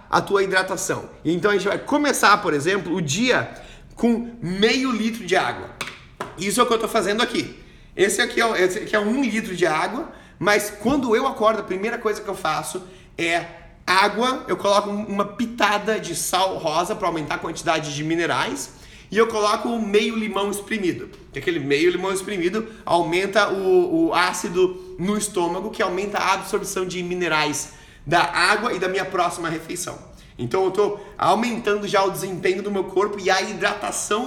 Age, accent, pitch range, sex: 30-49, Brazilian, 175-220 Hz, male